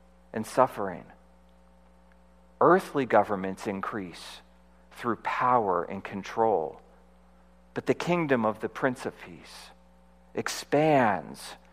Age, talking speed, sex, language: 40-59, 90 wpm, male, English